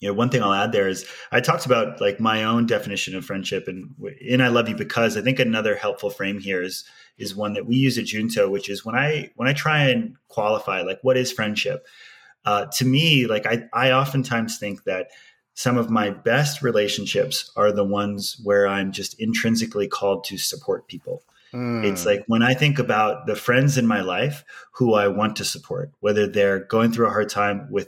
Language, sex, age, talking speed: English, male, 30-49, 215 wpm